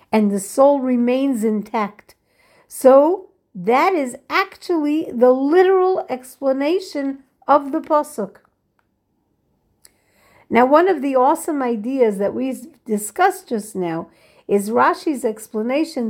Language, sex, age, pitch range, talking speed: English, female, 50-69, 200-290 Hz, 110 wpm